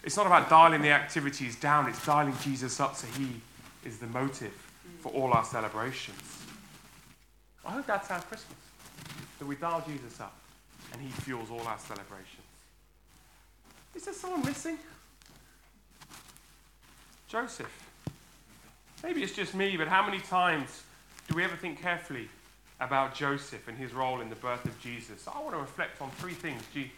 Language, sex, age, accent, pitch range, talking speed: English, male, 30-49, British, 130-175 Hz, 160 wpm